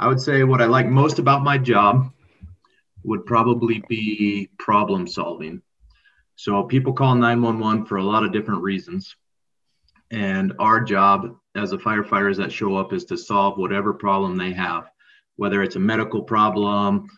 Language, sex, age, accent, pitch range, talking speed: English, male, 30-49, American, 100-120 Hz, 160 wpm